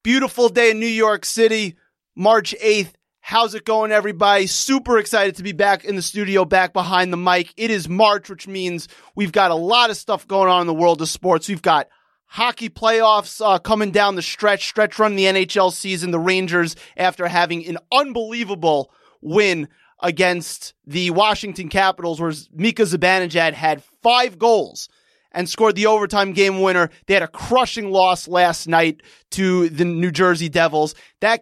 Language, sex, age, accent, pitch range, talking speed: English, male, 30-49, American, 175-215 Hz, 175 wpm